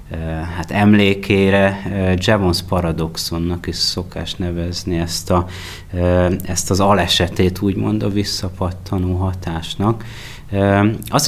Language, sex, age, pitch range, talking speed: Hungarian, male, 30-49, 85-105 Hz, 105 wpm